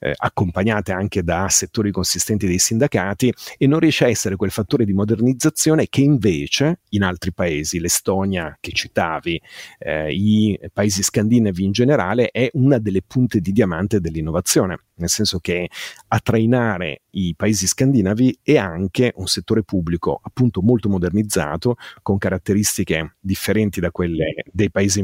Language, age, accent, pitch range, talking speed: Italian, 40-59, native, 95-120 Hz, 145 wpm